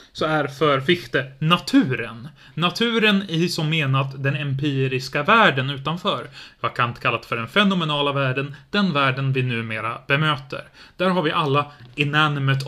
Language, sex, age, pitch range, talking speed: Swedish, male, 30-49, 130-160 Hz, 145 wpm